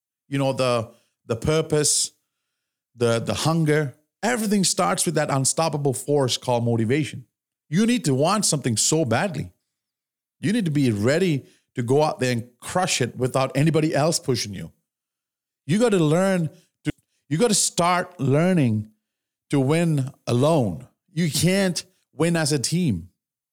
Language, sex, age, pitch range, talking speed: English, male, 40-59, 125-160 Hz, 150 wpm